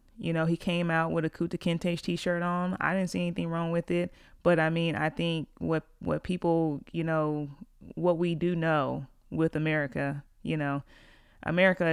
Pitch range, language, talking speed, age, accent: 145-170 Hz, English, 185 wpm, 30-49, American